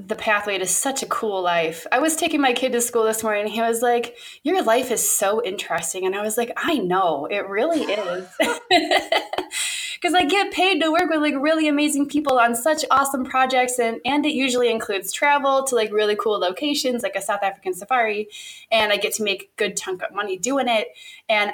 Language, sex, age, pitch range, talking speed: English, female, 20-39, 200-260 Hz, 215 wpm